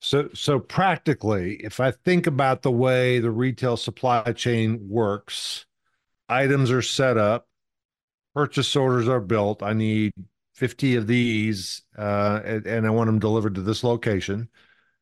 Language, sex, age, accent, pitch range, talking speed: English, male, 50-69, American, 110-135 Hz, 150 wpm